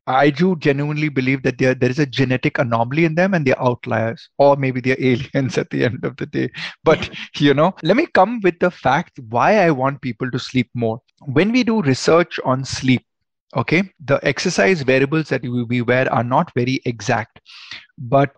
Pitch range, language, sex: 125-145 Hz, Hindi, male